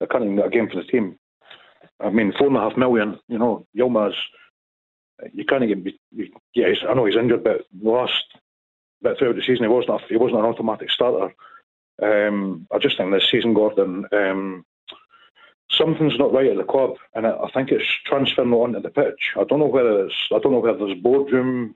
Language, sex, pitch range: English, male, 105-130 Hz